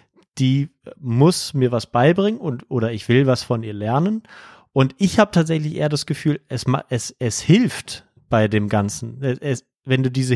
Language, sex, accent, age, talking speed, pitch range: German, male, German, 30-49, 190 wpm, 125-145 Hz